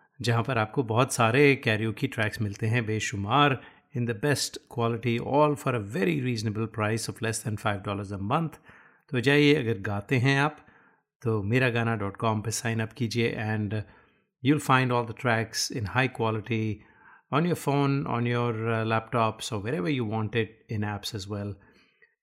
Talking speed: 185 wpm